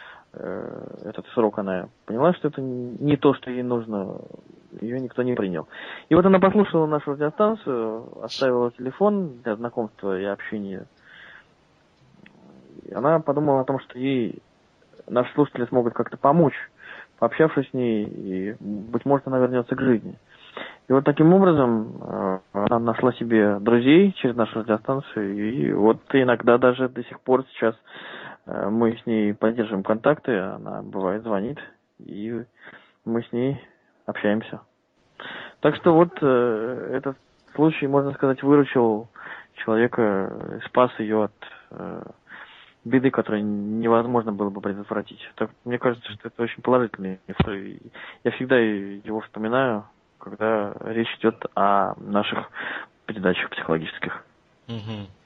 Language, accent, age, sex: Russian, native, 20-39, male